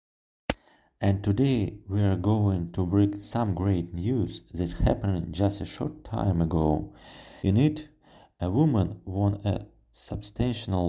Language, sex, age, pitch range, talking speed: Russian, male, 40-59, 95-110 Hz, 130 wpm